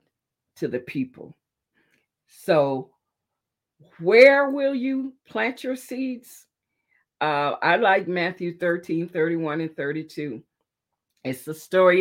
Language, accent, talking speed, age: English, American, 105 wpm, 50-69